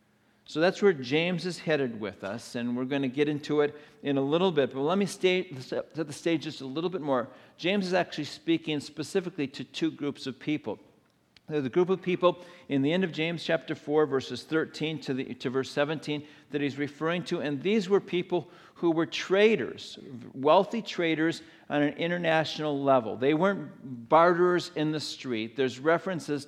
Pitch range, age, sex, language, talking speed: 130-165 Hz, 50-69, male, English, 195 wpm